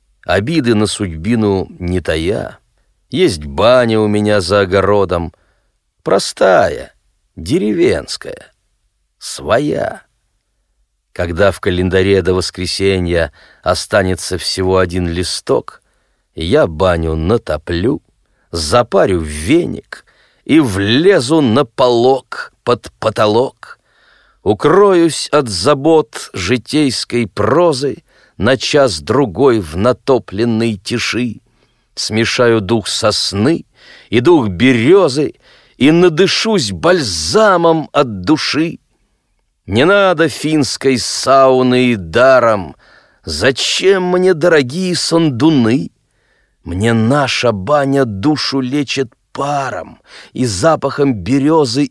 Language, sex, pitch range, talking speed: Russian, male, 100-140 Hz, 85 wpm